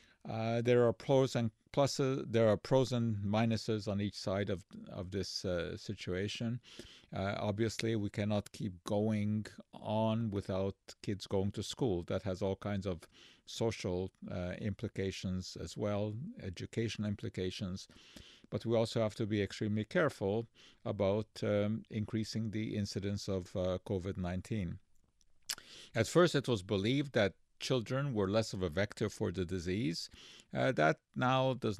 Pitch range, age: 95-115 Hz, 50-69